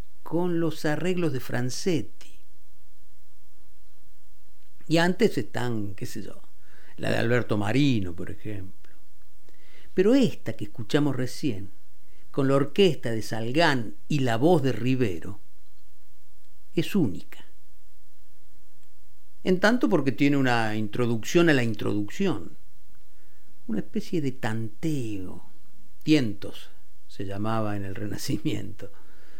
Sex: male